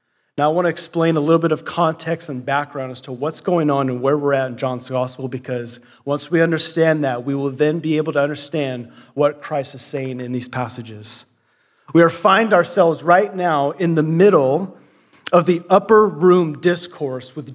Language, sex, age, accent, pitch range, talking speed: English, male, 30-49, American, 135-175 Hz, 200 wpm